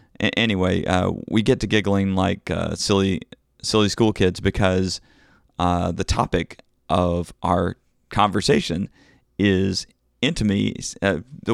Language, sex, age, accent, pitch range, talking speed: English, male, 40-59, American, 95-110 Hz, 110 wpm